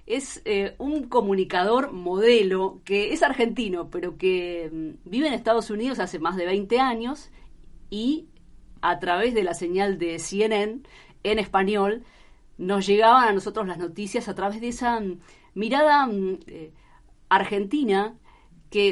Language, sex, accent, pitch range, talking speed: Spanish, female, Argentinian, 180-235 Hz, 135 wpm